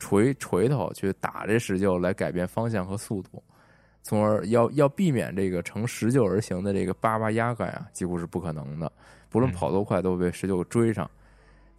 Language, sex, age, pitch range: Chinese, male, 20-39, 90-115 Hz